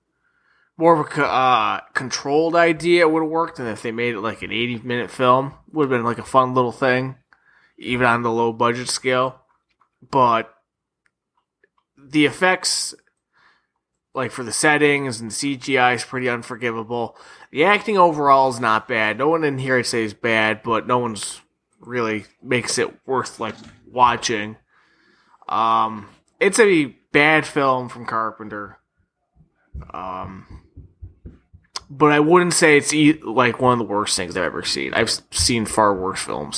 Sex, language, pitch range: male, English, 115-140 Hz